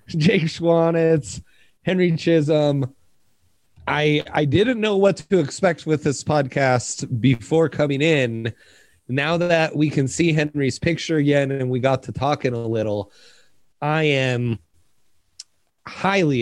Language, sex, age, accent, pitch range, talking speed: English, male, 30-49, American, 100-140 Hz, 130 wpm